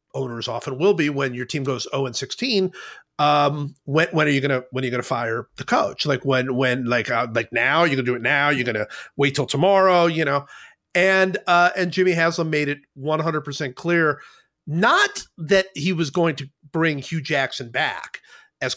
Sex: male